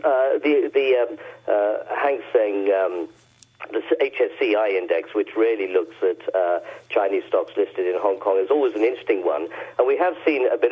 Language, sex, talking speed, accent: English, male, 185 wpm, British